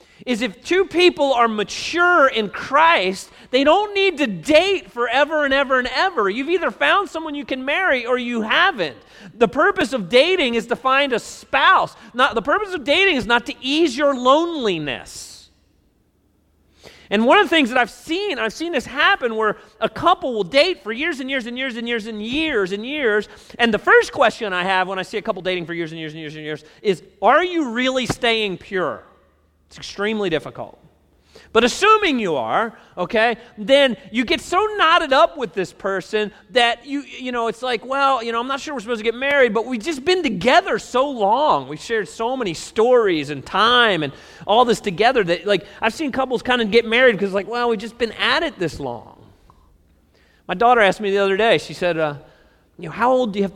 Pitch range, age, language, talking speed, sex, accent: 190-285 Hz, 40-59, English, 215 wpm, male, American